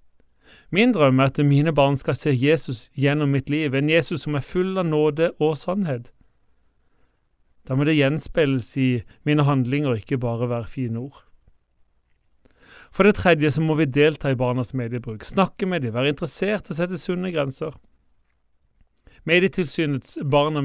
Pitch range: 130-160 Hz